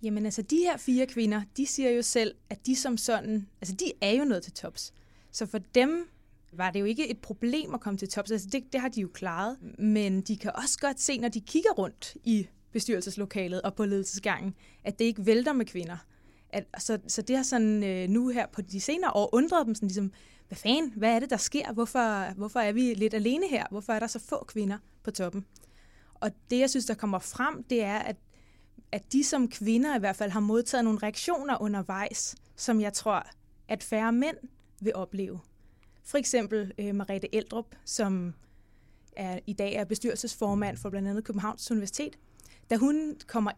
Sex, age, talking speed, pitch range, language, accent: female, 20-39, 200 wpm, 200-240 Hz, English, Danish